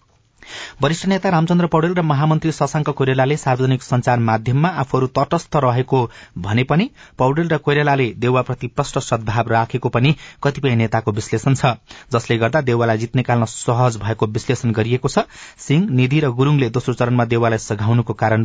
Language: English